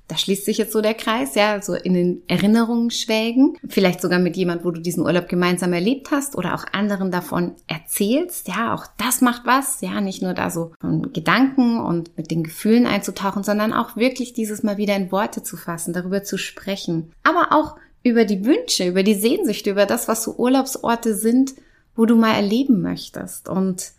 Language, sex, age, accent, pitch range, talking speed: German, female, 20-39, German, 195-245 Hz, 200 wpm